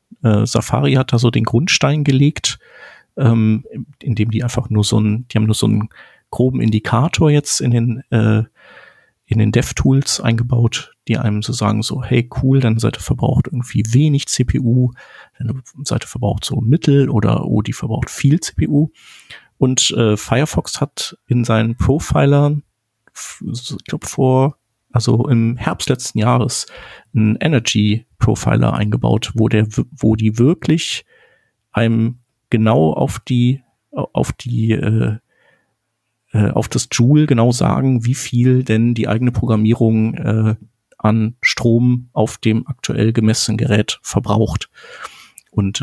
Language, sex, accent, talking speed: German, male, German, 140 wpm